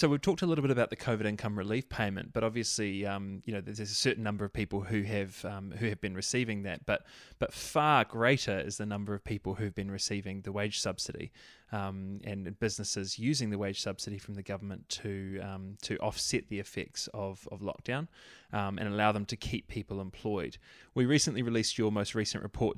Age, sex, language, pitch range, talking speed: 20-39, male, English, 100-115 Hz, 215 wpm